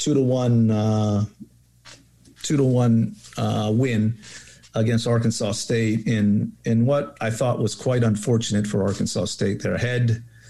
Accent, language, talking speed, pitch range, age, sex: American, English, 145 wpm, 105-120 Hz, 50-69, male